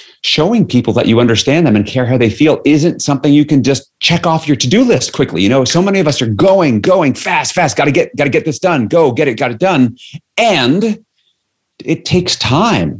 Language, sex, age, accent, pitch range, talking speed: English, male, 40-59, American, 95-150 Hz, 235 wpm